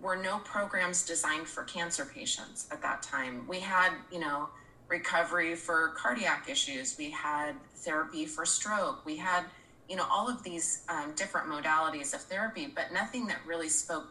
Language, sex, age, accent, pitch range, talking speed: English, female, 30-49, American, 155-185 Hz, 170 wpm